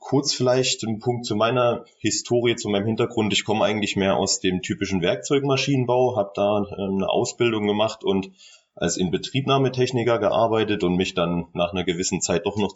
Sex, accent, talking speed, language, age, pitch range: male, German, 170 wpm, German, 30-49, 95-125 Hz